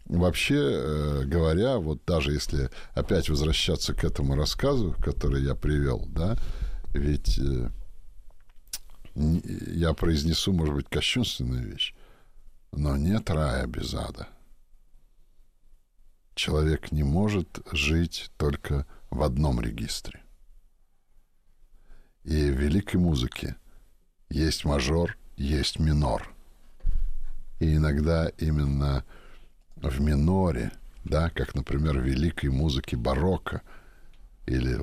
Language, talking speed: Russian, 95 wpm